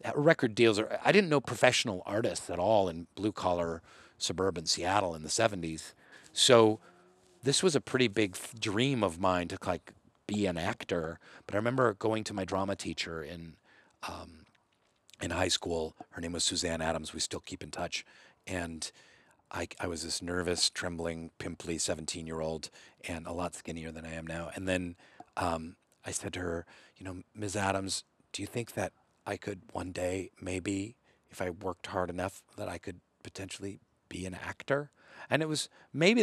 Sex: male